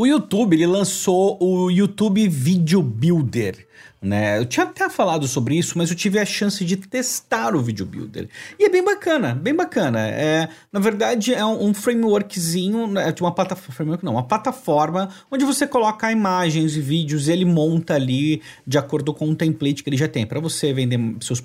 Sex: male